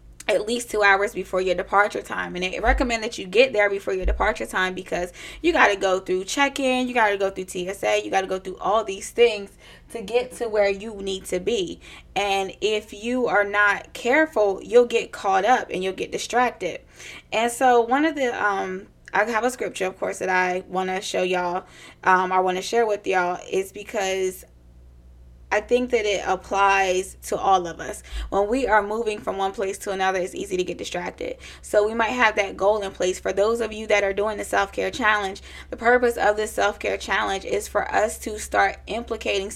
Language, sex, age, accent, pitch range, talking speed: English, female, 20-39, American, 185-225 Hz, 215 wpm